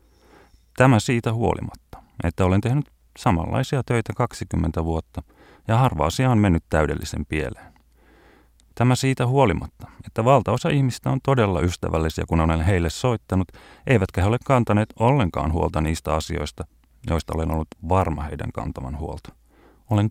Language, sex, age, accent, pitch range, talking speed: Finnish, male, 30-49, native, 80-110 Hz, 135 wpm